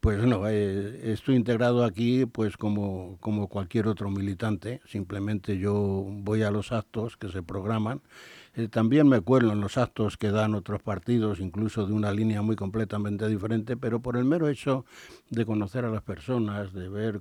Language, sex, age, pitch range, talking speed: Spanish, male, 60-79, 105-120 Hz, 180 wpm